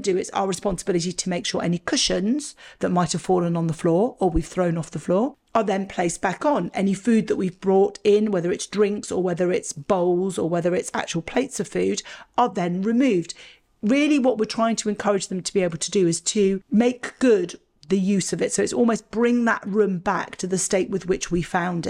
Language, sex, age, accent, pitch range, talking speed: English, female, 40-59, British, 180-225 Hz, 230 wpm